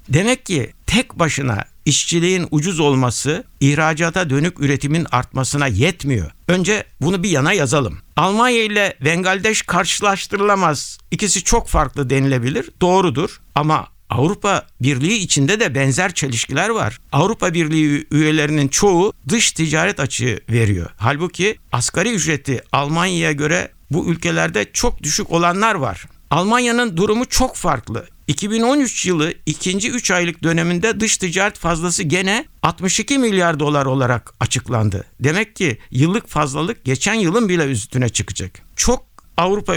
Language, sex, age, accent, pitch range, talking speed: Turkish, male, 60-79, native, 140-190 Hz, 125 wpm